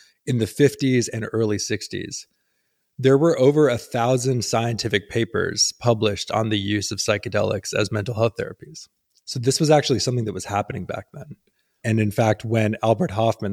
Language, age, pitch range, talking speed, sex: English, 20-39, 100-120 Hz, 175 wpm, male